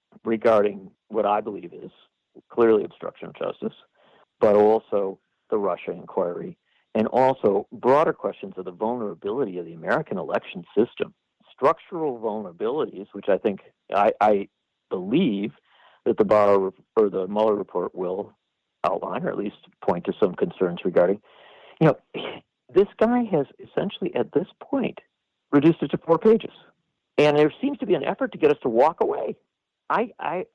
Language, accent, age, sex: English, American, 50-69, male